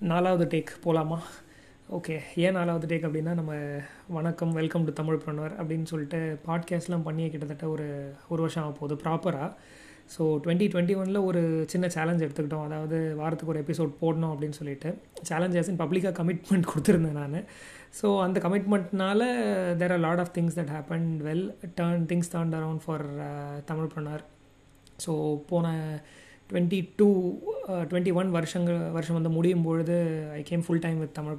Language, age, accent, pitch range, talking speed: Tamil, 20-39, native, 155-175 Hz, 150 wpm